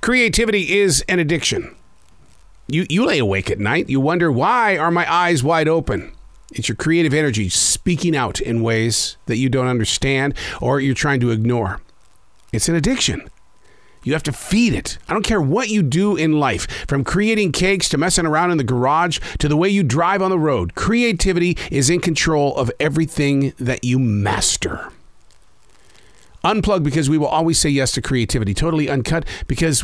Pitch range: 125-175 Hz